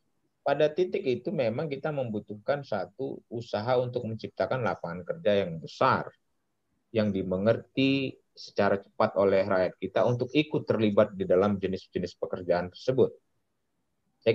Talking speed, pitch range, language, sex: 125 wpm, 90-125 Hz, Indonesian, male